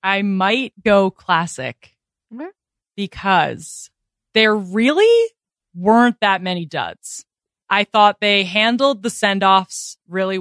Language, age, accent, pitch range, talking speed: English, 20-39, American, 170-205 Hz, 110 wpm